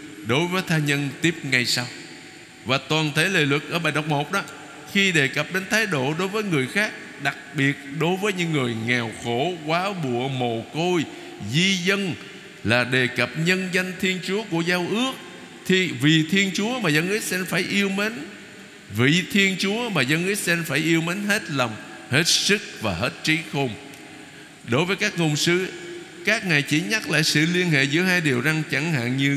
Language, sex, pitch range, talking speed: Vietnamese, male, 130-180 Hz, 205 wpm